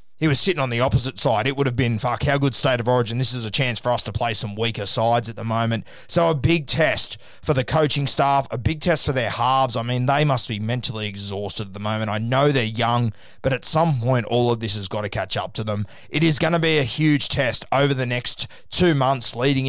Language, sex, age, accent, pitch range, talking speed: English, male, 20-39, Australian, 115-135 Hz, 265 wpm